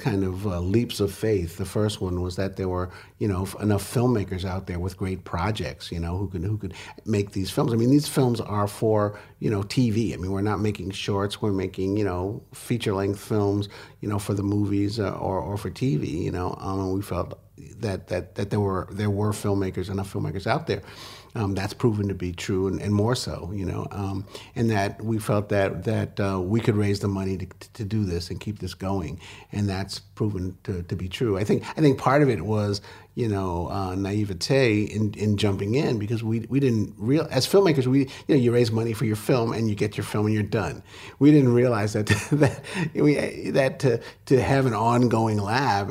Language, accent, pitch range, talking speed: English, American, 95-115 Hz, 225 wpm